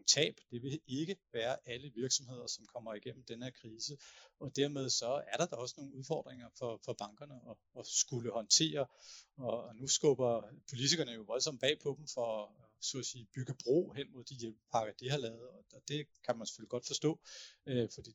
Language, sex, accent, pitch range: Danish, male, native, 115-135 Hz